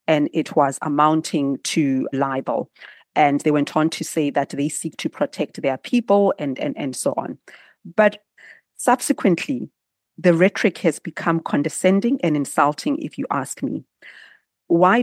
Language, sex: English, female